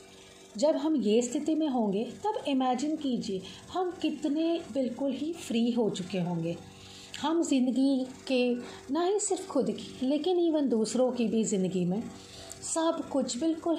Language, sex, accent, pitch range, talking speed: English, female, Indian, 185-295 Hz, 150 wpm